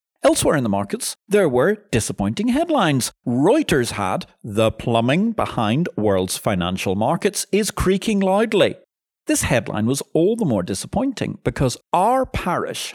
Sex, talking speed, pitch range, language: male, 135 wpm, 110-180 Hz, English